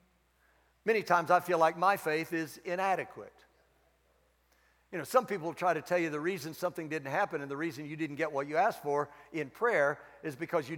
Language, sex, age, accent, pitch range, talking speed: English, male, 60-79, American, 160-245 Hz, 205 wpm